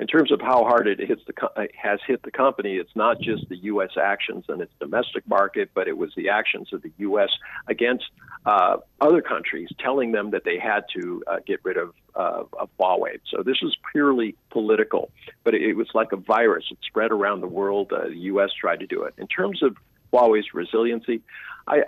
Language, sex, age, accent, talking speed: English, male, 50-69, American, 215 wpm